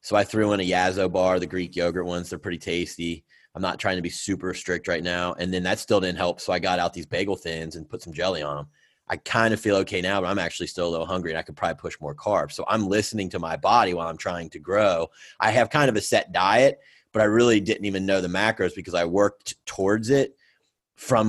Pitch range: 85-100 Hz